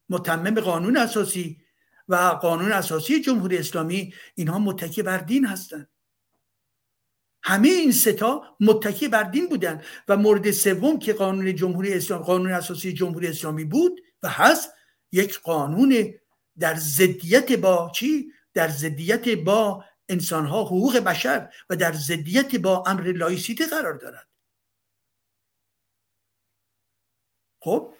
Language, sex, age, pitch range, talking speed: Persian, male, 60-79, 170-230 Hz, 120 wpm